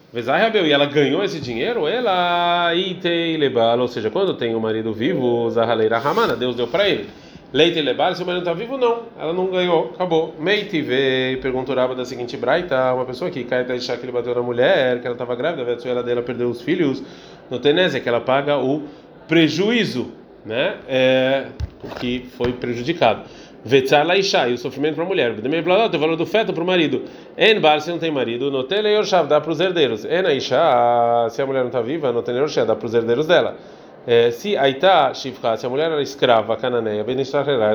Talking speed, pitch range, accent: 205 wpm, 120-170 Hz, Brazilian